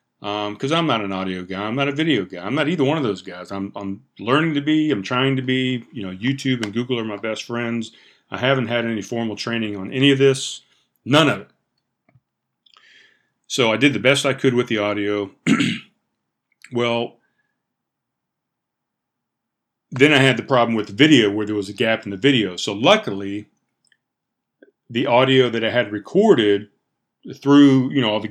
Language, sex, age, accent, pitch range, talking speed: English, male, 40-59, American, 105-125 Hz, 190 wpm